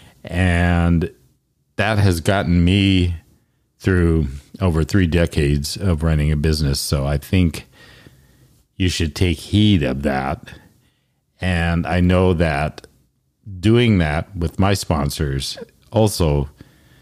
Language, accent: English, American